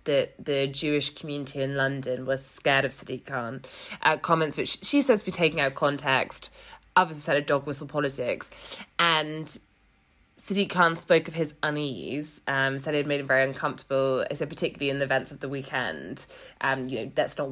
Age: 20-39